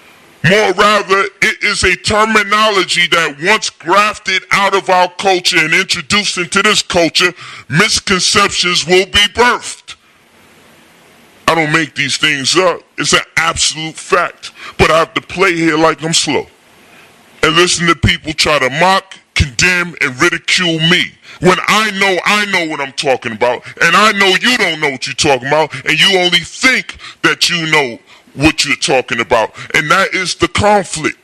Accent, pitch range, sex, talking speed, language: American, 155-195 Hz, female, 165 wpm, English